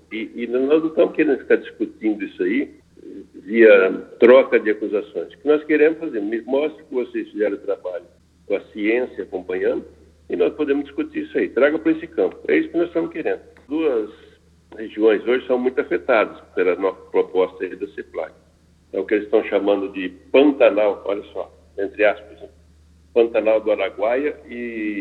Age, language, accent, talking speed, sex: 60-79, Portuguese, Brazilian, 180 wpm, male